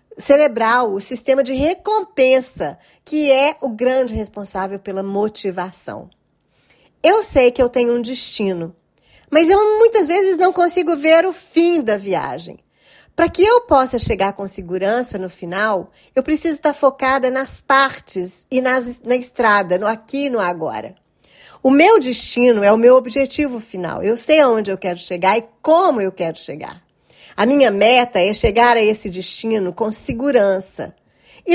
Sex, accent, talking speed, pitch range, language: female, Brazilian, 160 wpm, 200-275 Hz, Portuguese